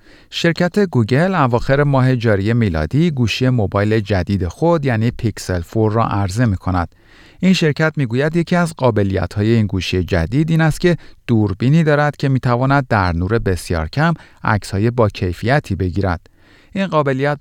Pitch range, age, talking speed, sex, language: 95-140 Hz, 40-59, 155 wpm, male, Persian